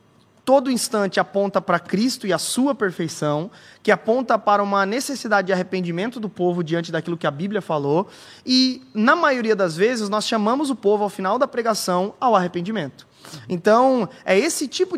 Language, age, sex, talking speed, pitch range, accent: Portuguese, 20-39, male, 170 wpm, 175-220 Hz, Brazilian